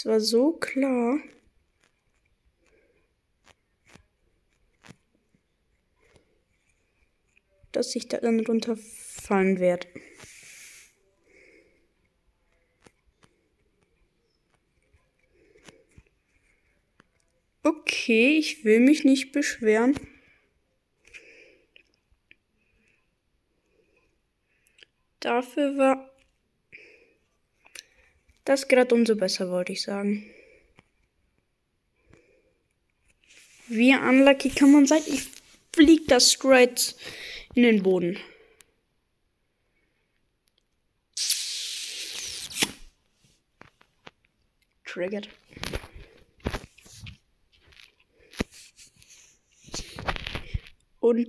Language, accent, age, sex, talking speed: German, German, 20-39, female, 45 wpm